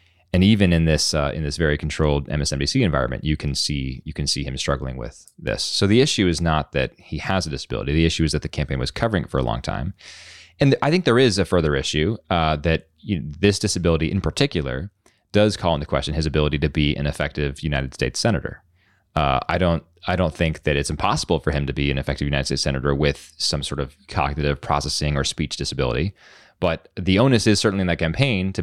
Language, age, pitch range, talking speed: English, 20-39, 75-95 Hz, 220 wpm